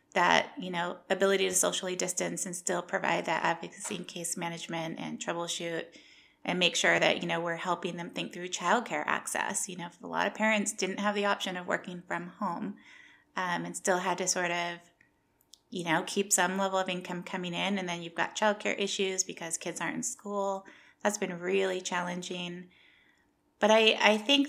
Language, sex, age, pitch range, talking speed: English, female, 20-39, 175-205 Hz, 195 wpm